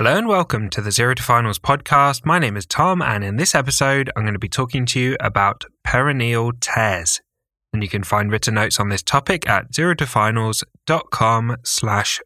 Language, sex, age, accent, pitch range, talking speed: English, male, 10-29, British, 105-135 Hz, 190 wpm